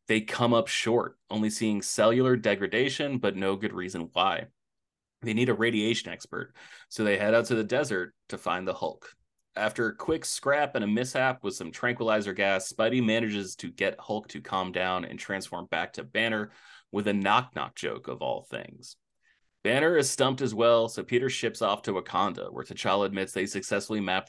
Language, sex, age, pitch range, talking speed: English, male, 30-49, 100-120 Hz, 190 wpm